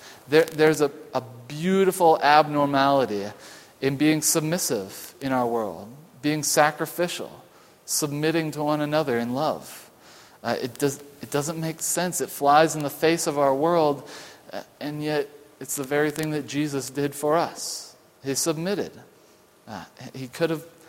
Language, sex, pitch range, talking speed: English, male, 145-175 Hz, 135 wpm